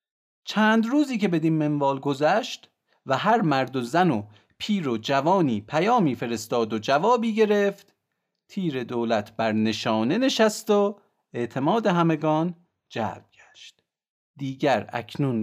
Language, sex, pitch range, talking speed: Persian, male, 120-200 Hz, 125 wpm